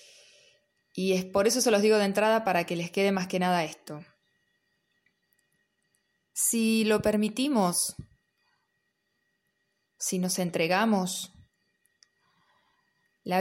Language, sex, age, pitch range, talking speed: Spanish, female, 20-39, 175-205 Hz, 105 wpm